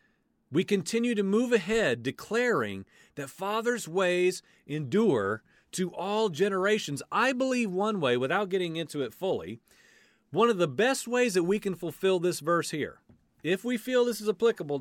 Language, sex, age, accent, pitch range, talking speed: English, male, 40-59, American, 145-210 Hz, 160 wpm